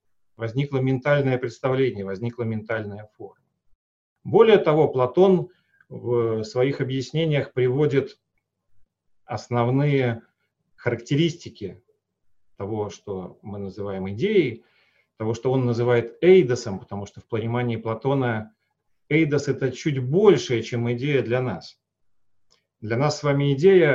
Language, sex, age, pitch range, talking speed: Russian, male, 40-59, 115-150 Hz, 110 wpm